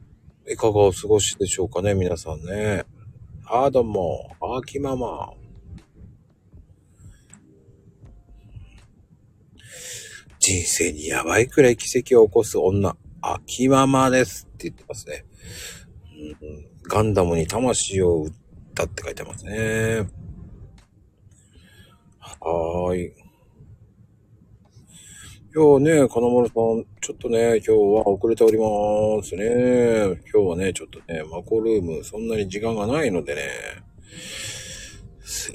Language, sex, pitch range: Japanese, male, 95-120 Hz